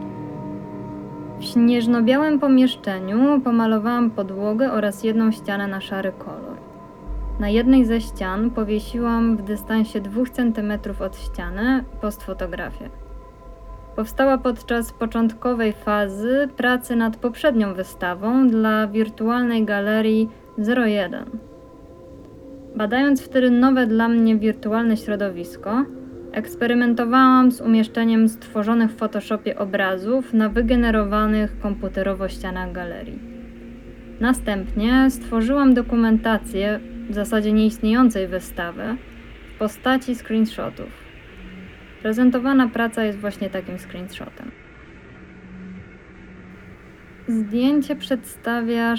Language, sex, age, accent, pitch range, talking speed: Polish, female, 20-39, native, 210-245 Hz, 90 wpm